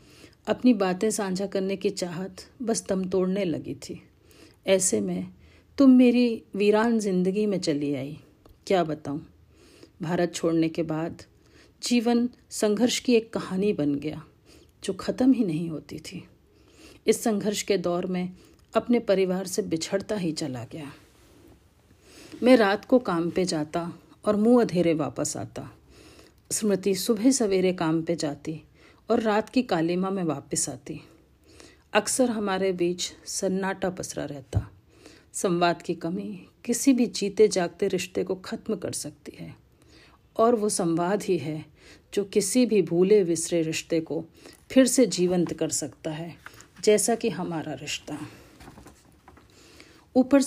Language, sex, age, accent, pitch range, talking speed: Hindi, female, 50-69, native, 165-220 Hz, 140 wpm